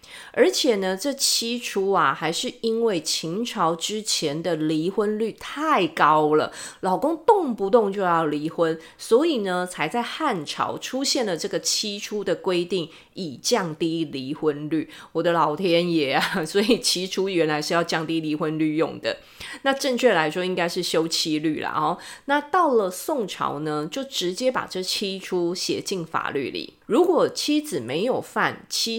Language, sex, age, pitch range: Chinese, female, 30-49, 165-265 Hz